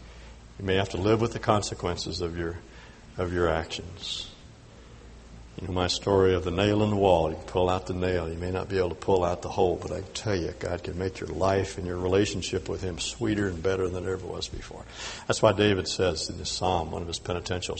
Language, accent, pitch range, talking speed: English, American, 90-110 Hz, 245 wpm